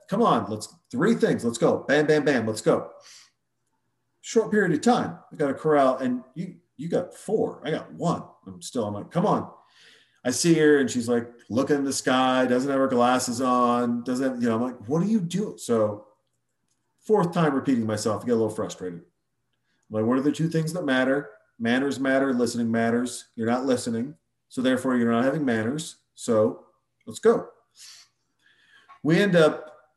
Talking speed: 195 wpm